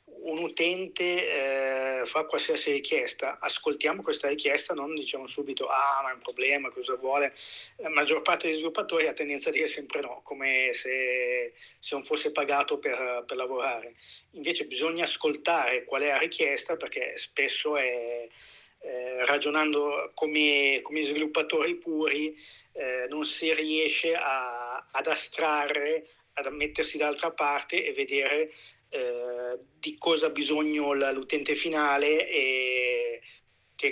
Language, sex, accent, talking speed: Italian, male, native, 135 wpm